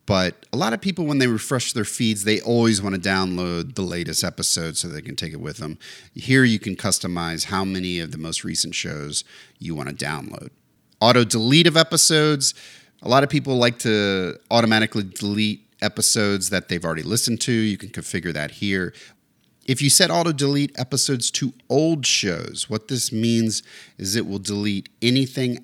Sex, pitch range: male, 95-120 Hz